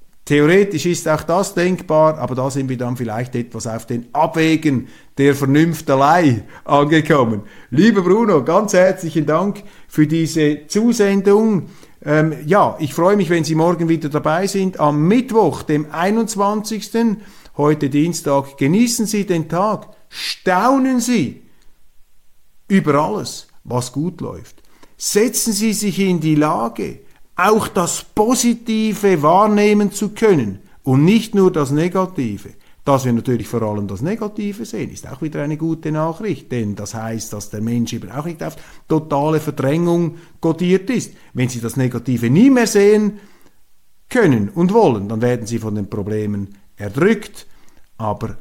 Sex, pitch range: male, 120-195 Hz